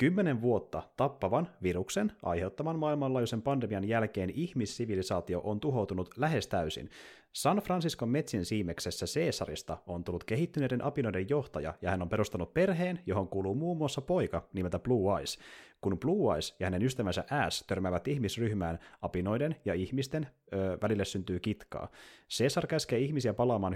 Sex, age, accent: male, 30-49, native